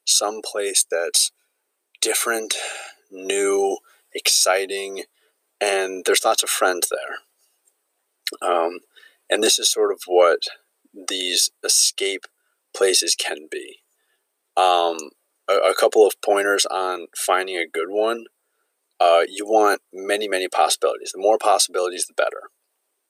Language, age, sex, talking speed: English, 20-39, male, 120 wpm